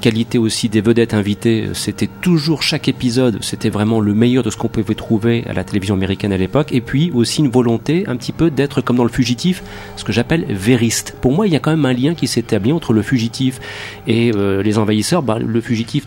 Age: 40-59